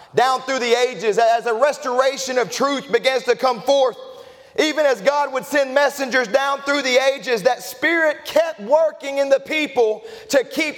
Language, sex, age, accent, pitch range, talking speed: English, male, 40-59, American, 260-320 Hz, 180 wpm